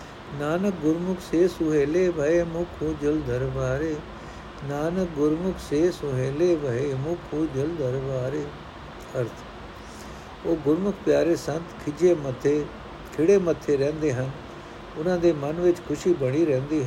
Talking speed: 115 wpm